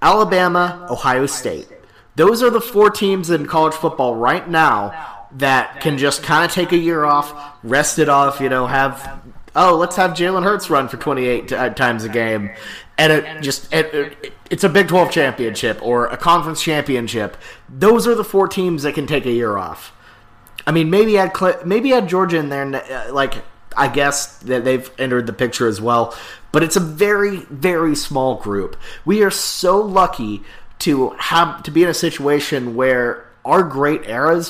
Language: English